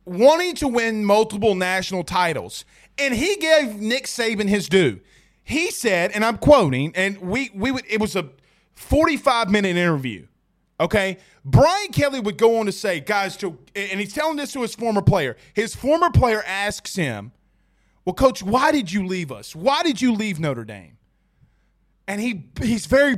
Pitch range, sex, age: 195-270 Hz, male, 30-49